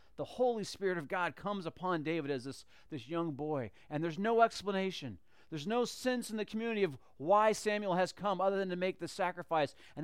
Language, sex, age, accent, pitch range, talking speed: English, male, 40-59, American, 135-205 Hz, 210 wpm